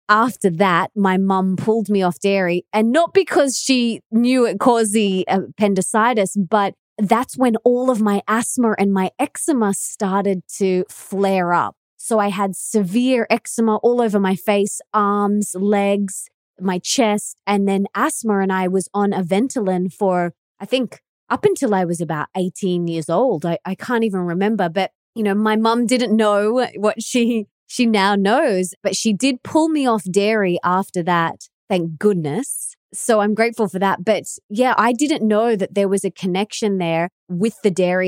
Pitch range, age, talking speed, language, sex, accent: 185-225 Hz, 20-39, 175 wpm, English, female, Australian